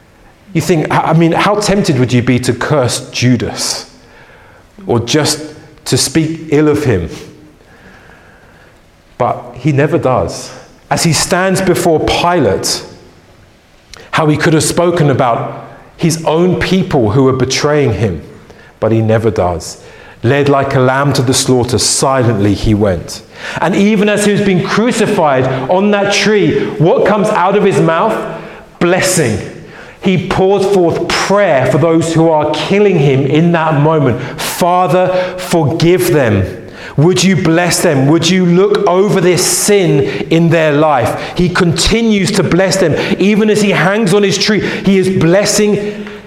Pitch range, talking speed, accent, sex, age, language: 135-190 Hz, 150 wpm, British, male, 40-59, English